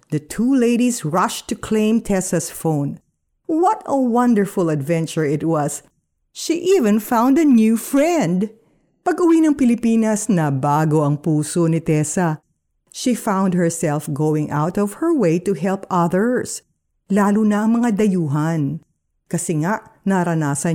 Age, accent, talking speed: 50-69, native, 140 wpm